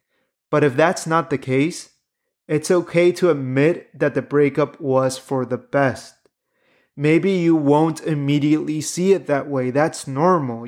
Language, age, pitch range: English, 30-49, 140-175 Hz